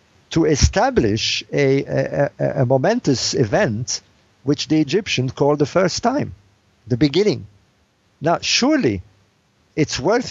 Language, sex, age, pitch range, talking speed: English, male, 50-69, 110-160 Hz, 115 wpm